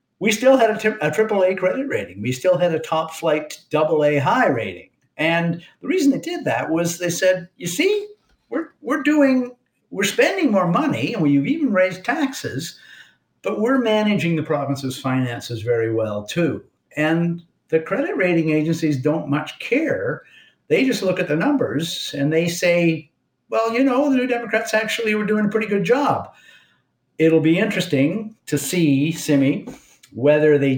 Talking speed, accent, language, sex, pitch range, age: 170 wpm, American, English, male, 130-185 Hz, 50-69